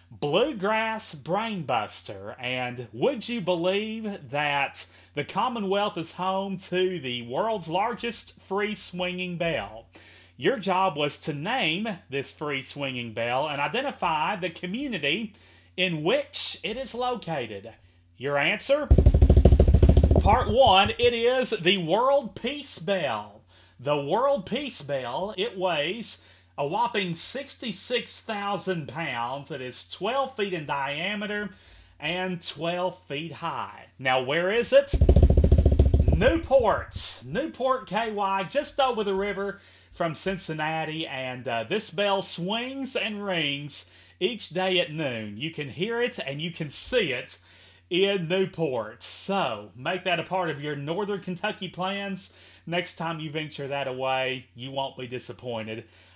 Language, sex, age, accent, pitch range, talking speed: English, male, 30-49, American, 130-205 Hz, 130 wpm